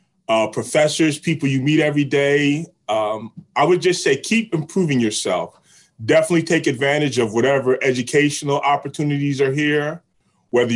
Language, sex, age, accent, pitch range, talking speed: English, male, 30-49, American, 120-160 Hz, 140 wpm